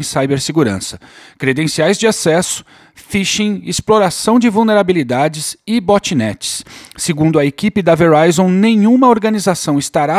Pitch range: 155-210 Hz